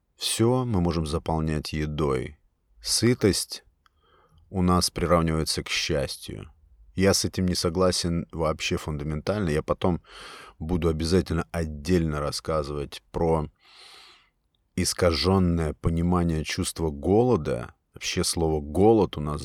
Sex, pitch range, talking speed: male, 80-90 Hz, 105 wpm